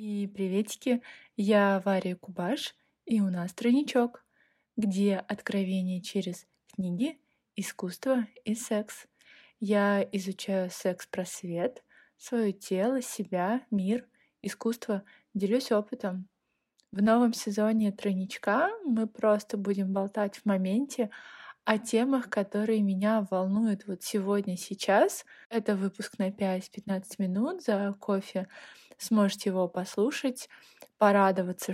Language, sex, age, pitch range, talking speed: Russian, female, 20-39, 195-240 Hz, 105 wpm